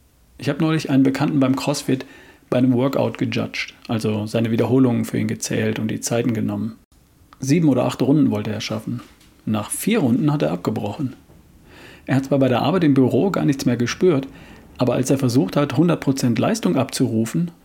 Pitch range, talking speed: 115-145 Hz, 185 wpm